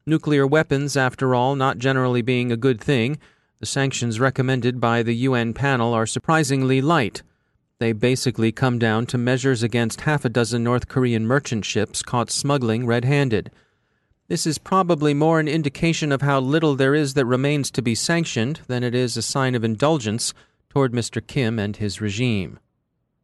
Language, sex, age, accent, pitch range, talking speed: English, male, 40-59, American, 120-145 Hz, 170 wpm